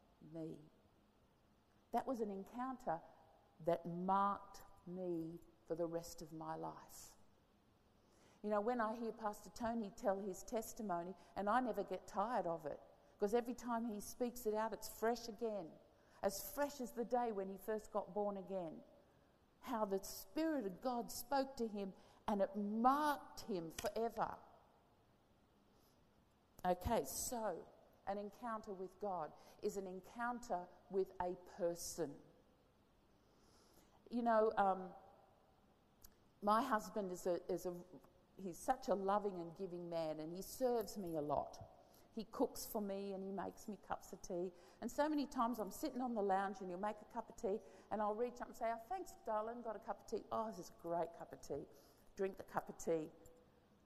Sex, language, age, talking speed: female, English, 50-69, 170 wpm